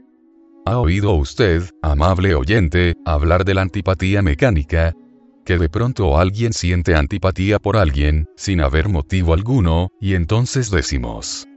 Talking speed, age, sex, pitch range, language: 130 wpm, 40-59, male, 85-105 Hz, Spanish